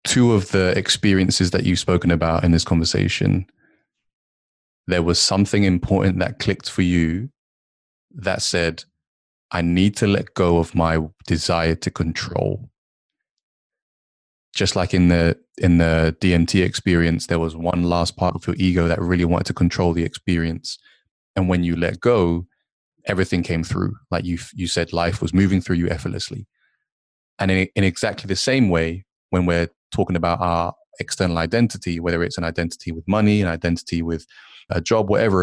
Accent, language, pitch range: British, English, 85-95 Hz